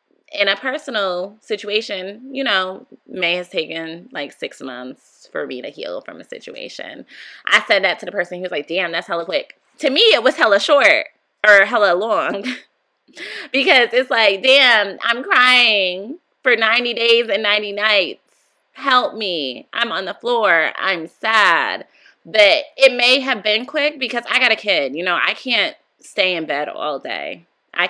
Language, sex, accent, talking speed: English, female, American, 175 wpm